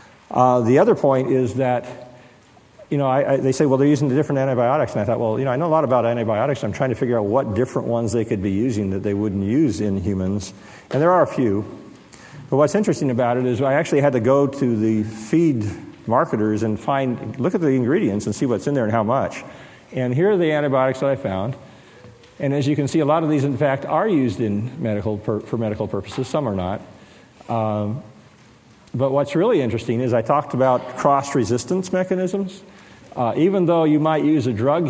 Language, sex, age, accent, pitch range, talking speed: English, male, 50-69, American, 115-140 Hz, 220 wpm